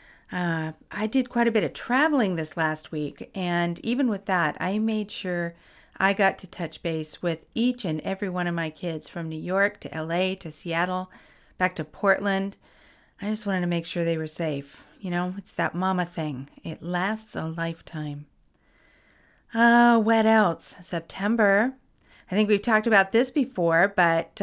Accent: American